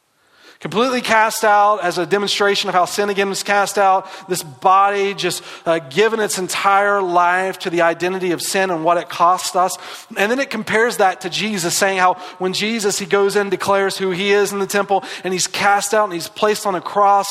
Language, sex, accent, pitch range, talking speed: English, male, American, 170-205 Hz, 215 wpm